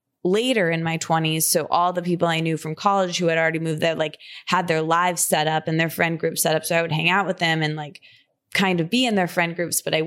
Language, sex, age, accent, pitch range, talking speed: English, female, 20-39, American, 155-180 Hz, 280 wpm